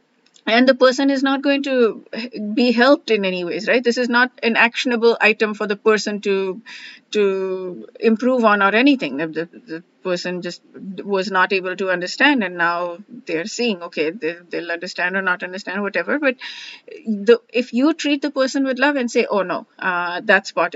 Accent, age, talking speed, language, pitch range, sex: Indian, 30-49, 190 wpm, English, 195-265 Hz, female